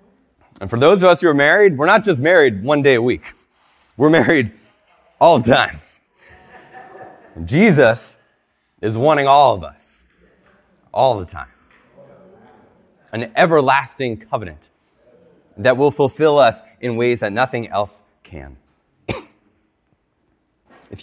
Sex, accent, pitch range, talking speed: male, American, 75-125 Hz, 125 wpm